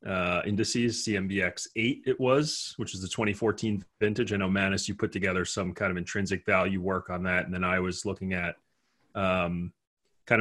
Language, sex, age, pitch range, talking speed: English, male, 30-49, 95-110 Hz, 190 wpm